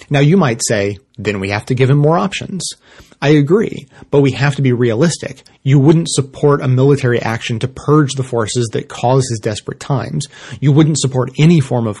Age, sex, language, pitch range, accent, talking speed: 30-49, male, English, 120-145 Hz, American, 205 wpm